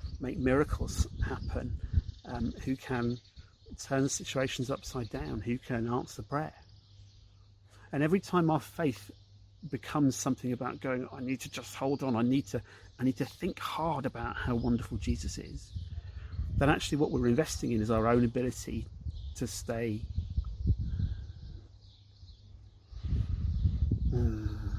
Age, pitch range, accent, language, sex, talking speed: 40-59, 95-125 Hz, British, English, male, 135 wpm